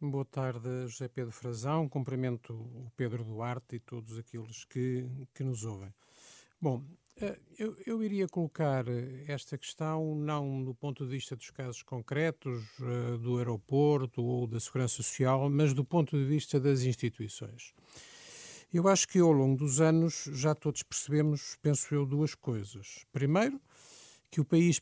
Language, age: Portuguese, 50-69